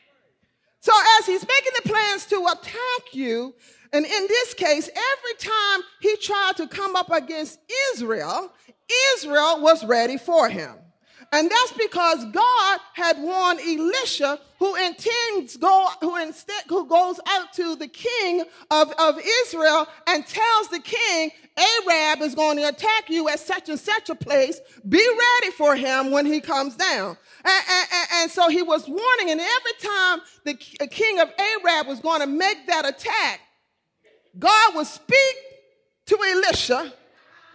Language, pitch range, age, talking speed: English, 305-415 Hz, 40-59, 150 wpm